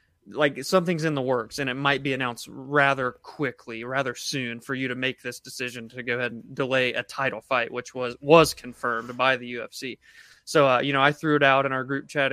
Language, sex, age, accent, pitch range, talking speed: English, male, 20-39, American, 130-150 Hz, 230 wpm